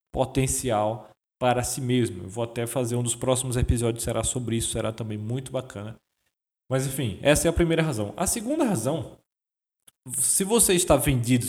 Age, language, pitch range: 20-39, Portuguese, 115-155 Hz